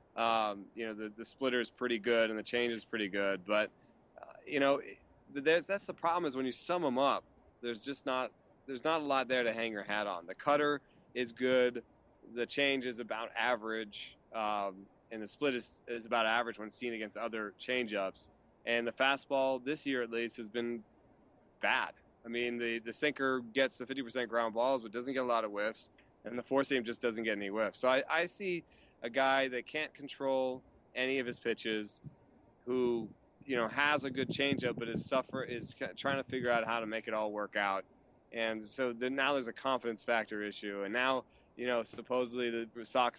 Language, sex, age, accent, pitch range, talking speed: English, male, 30-49, American, 110-130 Hz, 205 wpm